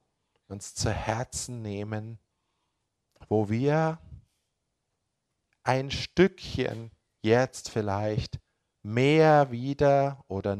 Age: 50-69